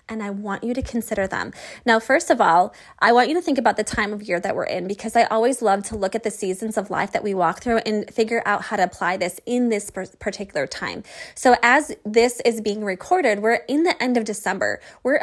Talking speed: 250 wpm